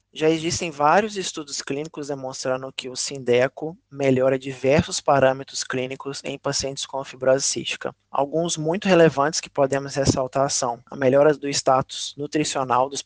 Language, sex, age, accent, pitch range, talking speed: Portuguese, male, 20-39, Brazilian, 135-150 Hz, 145 wpm